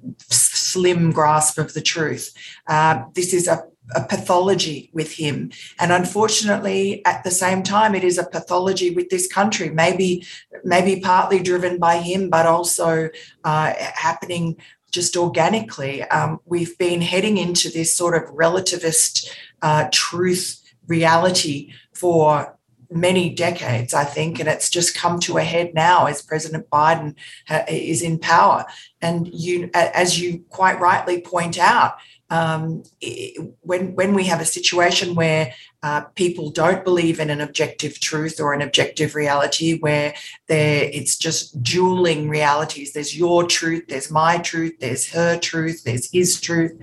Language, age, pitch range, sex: English, 40-59, 155-180 Hz, female